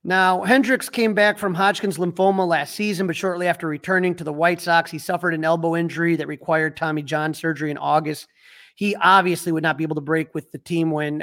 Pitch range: 160-195 Hz